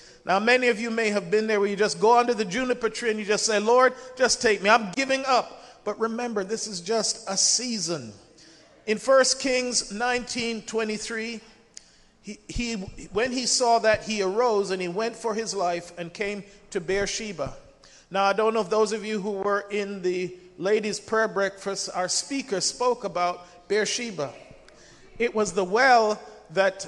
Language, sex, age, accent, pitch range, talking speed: English, male, 40-59, American, 195-235 Hz, 180 wpm